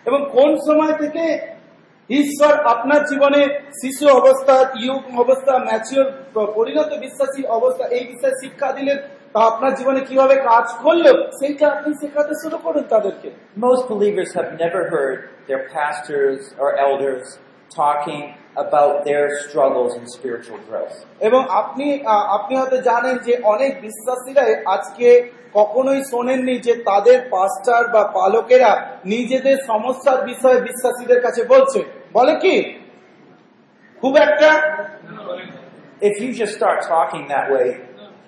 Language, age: Bengali, 40-59